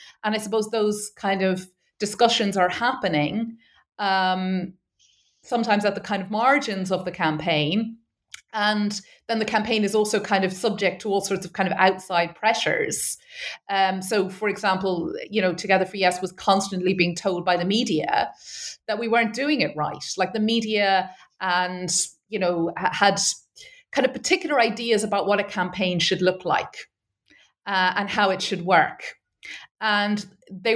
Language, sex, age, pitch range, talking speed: English, female, 30-49, 185-225 Hz, 165 wpm